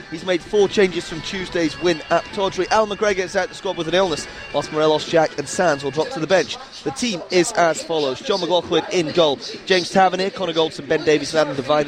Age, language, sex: 30-49, English, male